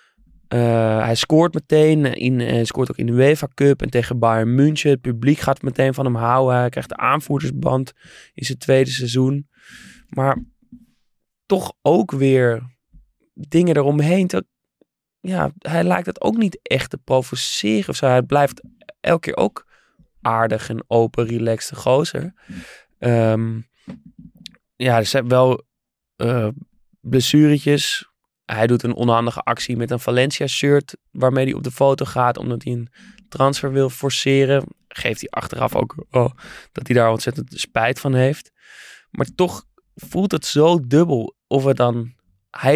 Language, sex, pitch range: Dutch, male, 125-150 Hz